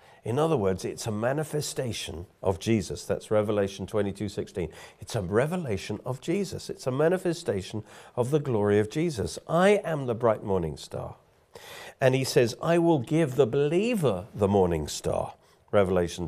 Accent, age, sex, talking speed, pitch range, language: British, 50-69, male, 160 wpm, 95-130 Hz, English